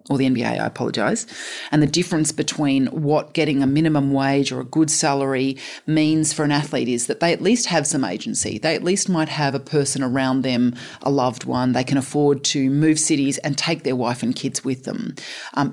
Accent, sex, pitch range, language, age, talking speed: Australian, female, 135-155 Hz, English, 30-49, 220 wpm